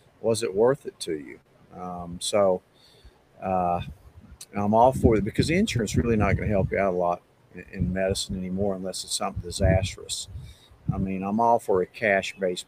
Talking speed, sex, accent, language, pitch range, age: 190 wpm, male, American, English, 95-110 Hz, 50-69